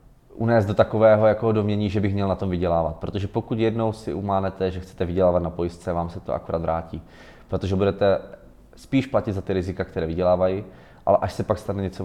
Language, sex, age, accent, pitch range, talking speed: Czech, male, 20-39, native, 90-105 Hz, 200 wpm